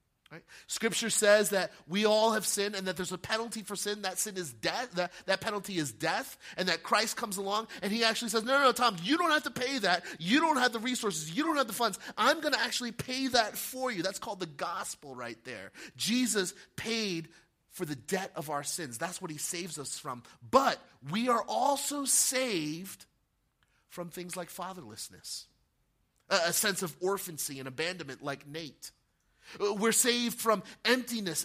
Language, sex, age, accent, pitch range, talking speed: English, male, 30-49, American, 175-225 Hz, 185 wpm